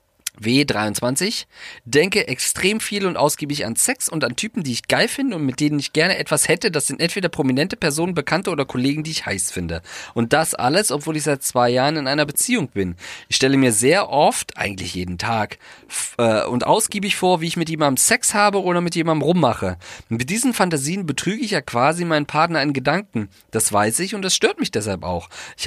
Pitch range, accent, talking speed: 115-170 Hz, German, 210 wpm